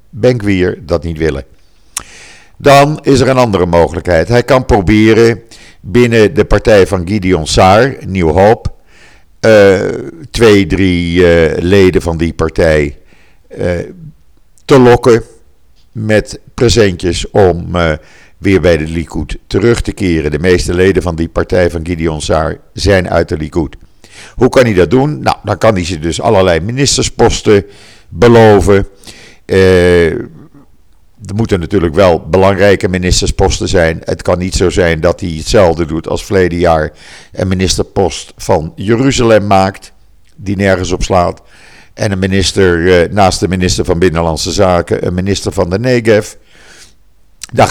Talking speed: 140 wpm